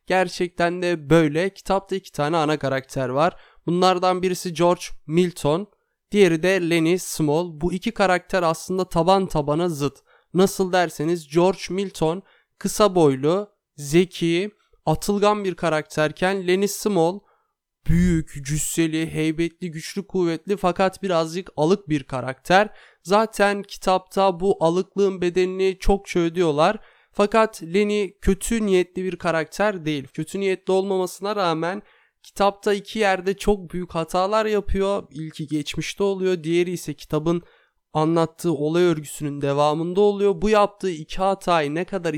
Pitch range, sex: 155-190 Hz, male